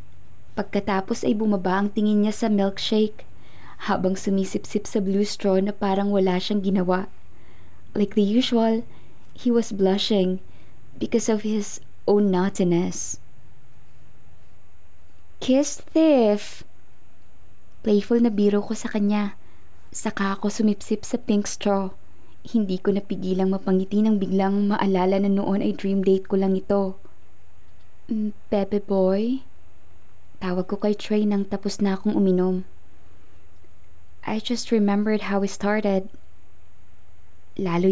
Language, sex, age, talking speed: Filipino, female, 20-39, 120 wpm